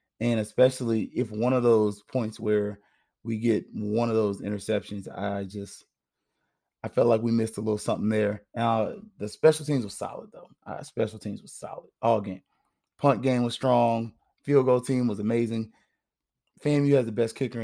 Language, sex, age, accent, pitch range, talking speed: English, male, 30-49, American, 105-125 Hz, 185 wpm